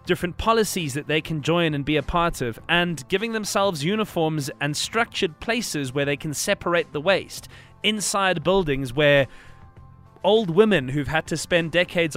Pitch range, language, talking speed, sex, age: 140-185 Hz, English, 170 wpm, male, 20-39